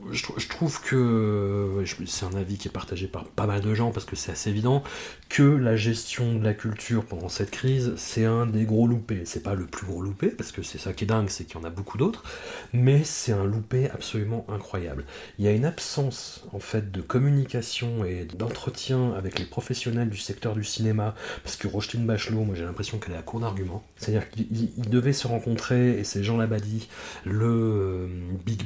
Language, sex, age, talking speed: French, male, 30-49, 215 wpm